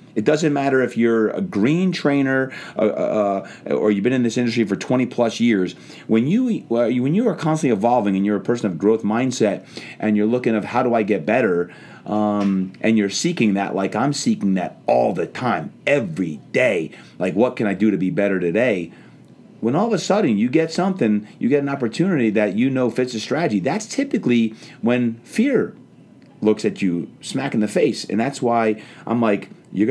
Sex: male